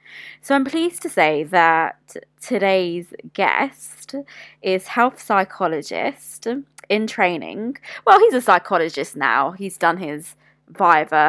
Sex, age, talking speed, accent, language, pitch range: female, 20-39, 115 wpm, British, English, 165-195 Hz